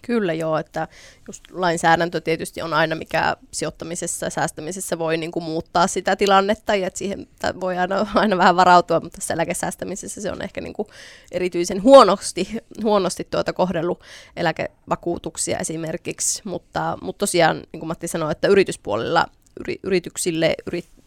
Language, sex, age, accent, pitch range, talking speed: Finnish, female, 20-39, native, 165-190 Hz, 140 wpm